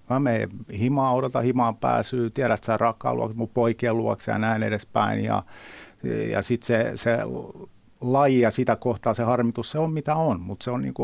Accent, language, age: native, Finnish, 50-69